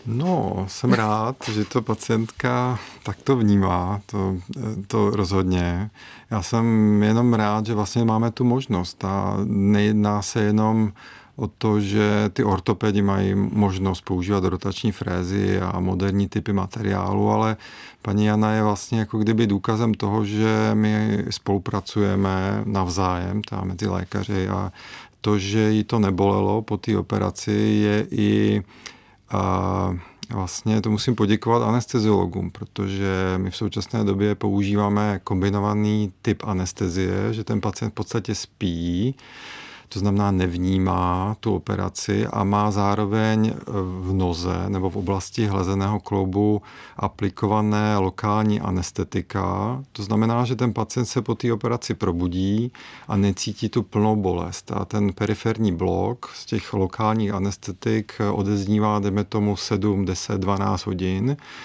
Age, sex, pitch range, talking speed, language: 40-59, male, 95-110 Hz, 130 wpm, Czech